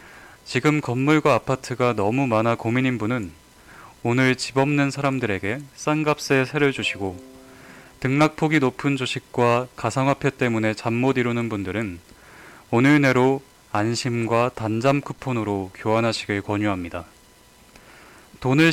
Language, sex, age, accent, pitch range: Korean, male, 20-39, native, 105-140 Hz